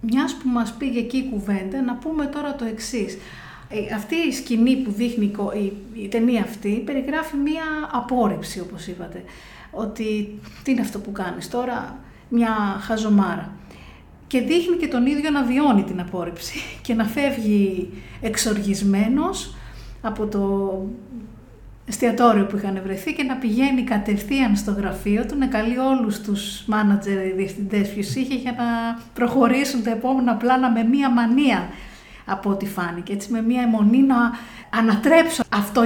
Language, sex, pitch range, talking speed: Greek, female, 205-265 Hz, 165 wpm